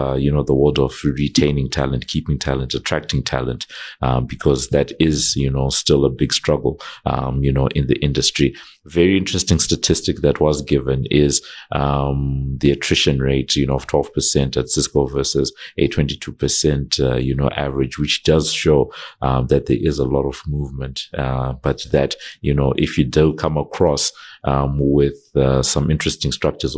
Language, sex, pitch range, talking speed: English, male, 65-75 Hz, 180 wpm